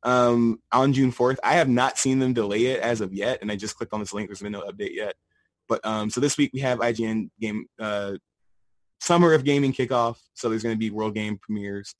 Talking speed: 240 wpm